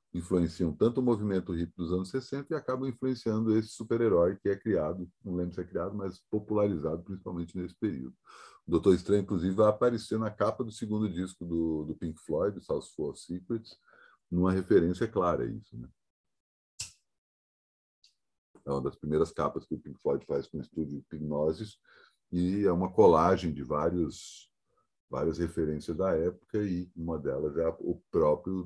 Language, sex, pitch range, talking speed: Portuguese, male, 80-105 Hz, 170 wpm